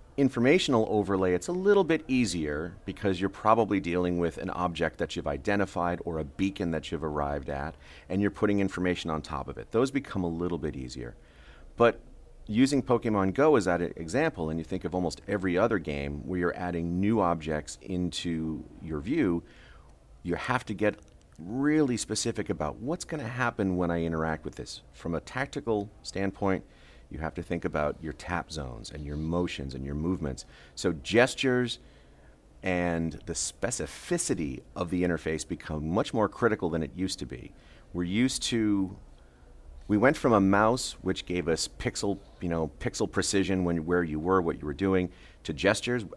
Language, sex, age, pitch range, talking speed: English, male, 40-59, 80-100 Hz, 180 wpm